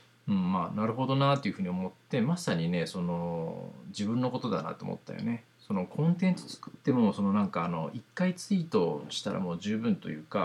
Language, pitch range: Japanese, 115-190 Hz